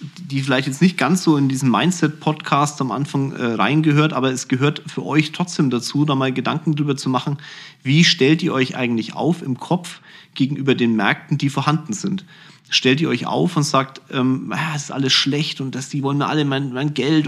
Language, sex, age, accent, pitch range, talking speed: German, male, 40-59, German, 135-165 Hz, 210 wpm